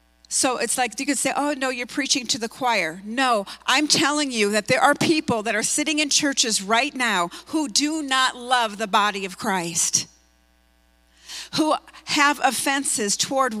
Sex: female